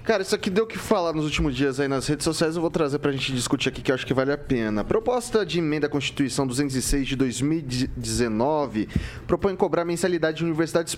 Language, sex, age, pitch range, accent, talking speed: Portuguese, male, 20-39, 125-160 Hz, Brazilian, 225 wpm